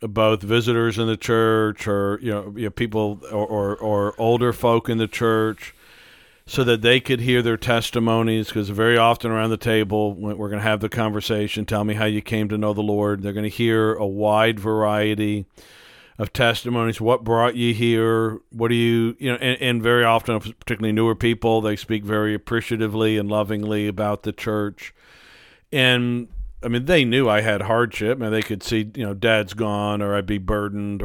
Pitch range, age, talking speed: 105-115 Hz, 50-69, 195 wpm